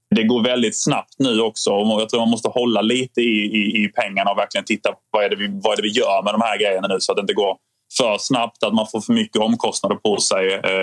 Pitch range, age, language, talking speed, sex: 100-120 Hz, 20-39, Swedish, 275 wpm, male